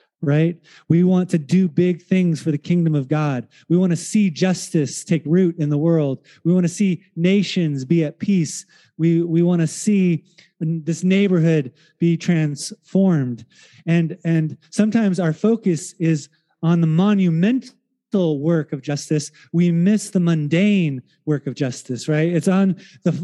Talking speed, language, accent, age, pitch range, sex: 160 wpm, English, American, 30-49, 165-195 Hz, male